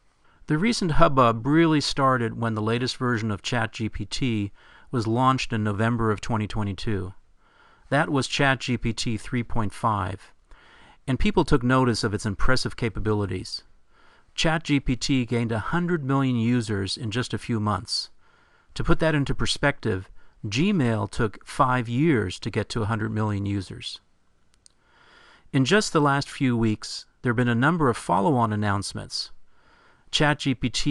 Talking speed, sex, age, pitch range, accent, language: 135 wpm, male, 50-69, 110-140 Hz, American, English